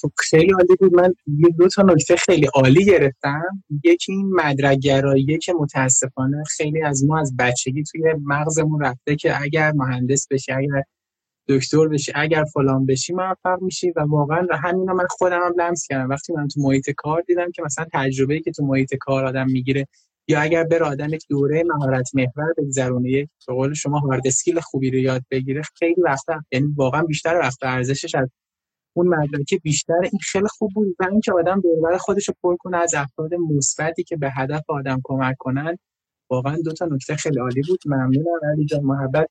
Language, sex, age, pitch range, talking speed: Persian, male, 10-29, 140-175 Hz, 175 wpm